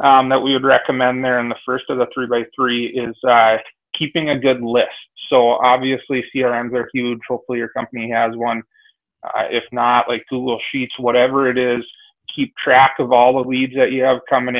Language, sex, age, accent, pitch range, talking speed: English, male, 30-49, American, 120-130 Hz, 200 wpm